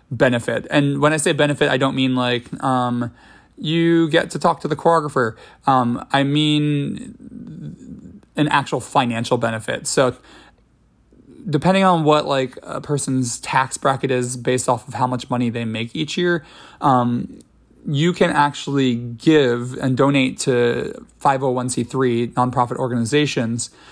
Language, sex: English, male